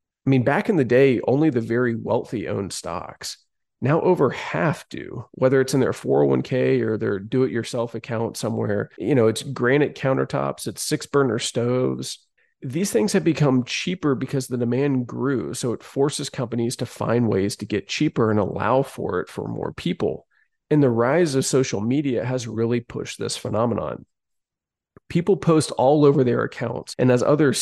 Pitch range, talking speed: 115-140 Hz, 175 wpm